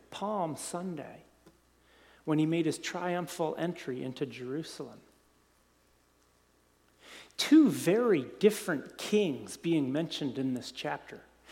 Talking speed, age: 100 wpm, 50-69